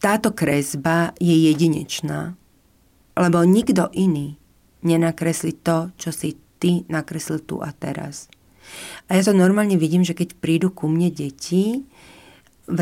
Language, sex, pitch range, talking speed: Slovak, female, 155-180 Hz, 130 wpm